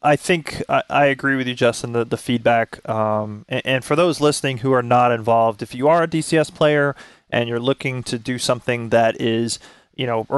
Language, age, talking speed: English, 20-39, 215 wpm